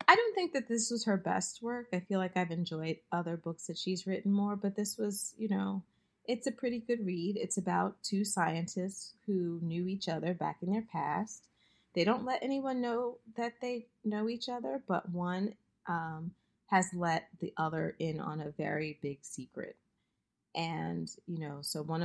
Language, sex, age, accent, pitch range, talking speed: English, female, 30-49, American, 155-210 Hz, 190 wpm